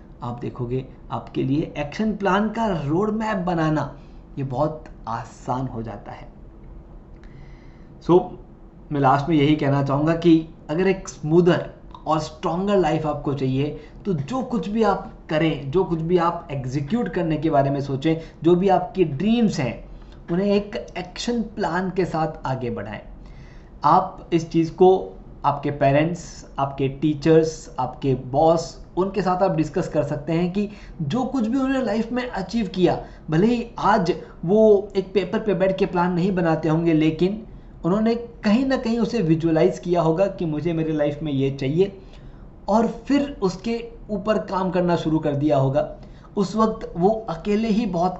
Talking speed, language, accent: 165 wpm, Hindi, native